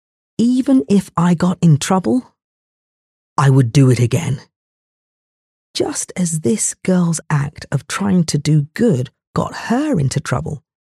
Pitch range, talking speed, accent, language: 145-190 Hz, 140 wpm, British, English